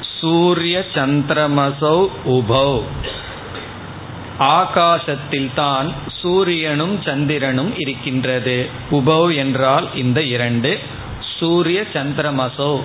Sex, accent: male, native